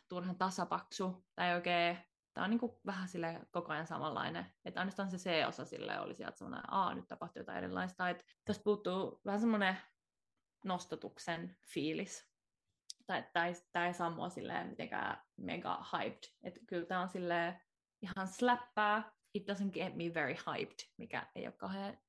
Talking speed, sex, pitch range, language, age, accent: 145 wpm, female, 175-205 Hz, Finnish, 20-39, native